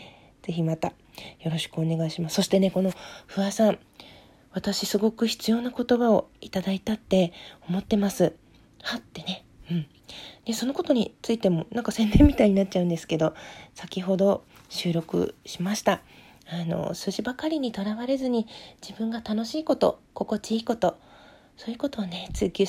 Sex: female